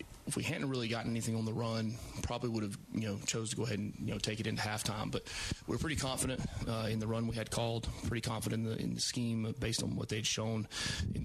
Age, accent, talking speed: 30-49, American, 255 wpm